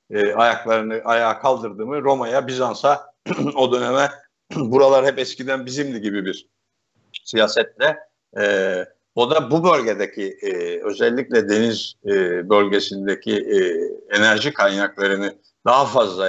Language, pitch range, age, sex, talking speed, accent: Turkish, 110-135 Hz, 60-79, male, 110 wpm, native